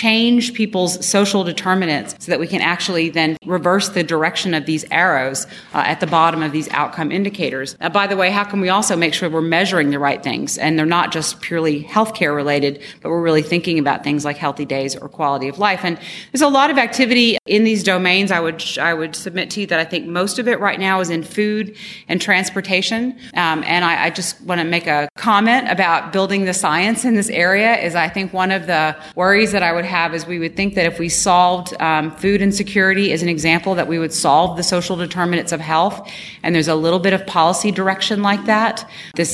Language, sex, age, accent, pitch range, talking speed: English, female, 30-49, American, 160-195 Hz, 225 wpm